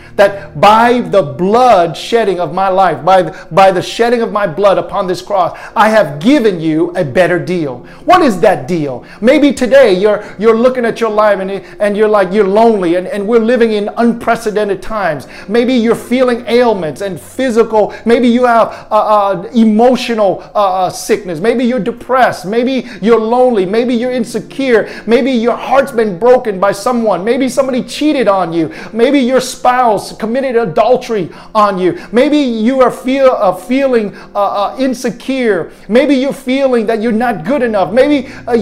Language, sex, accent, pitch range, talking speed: English, male, American, 200-250 Hz, 170 wpm